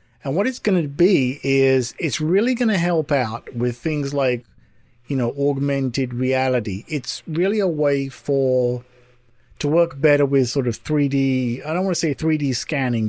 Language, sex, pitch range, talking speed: English, male, 120-155 Hz, 180 wpm